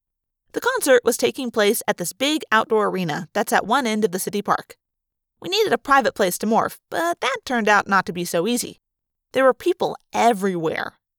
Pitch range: 185-255 Hz